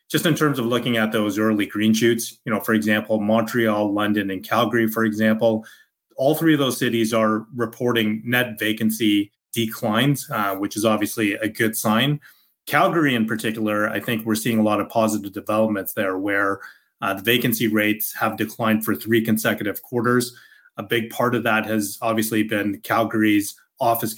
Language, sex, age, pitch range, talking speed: English, male, 30-49, 105-120 Hz, 175 wpm